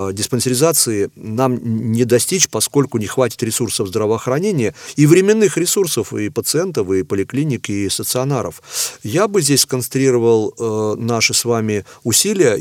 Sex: male